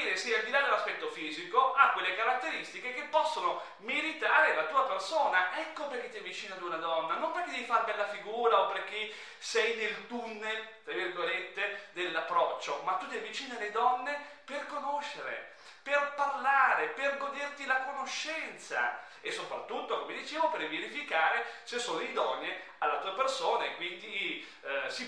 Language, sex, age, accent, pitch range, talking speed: Italian, male, 30-49, native, 215-300 Hz, 160 wpm